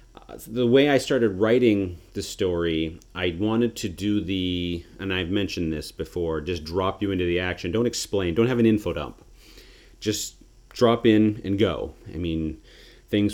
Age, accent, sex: 30-49, American, male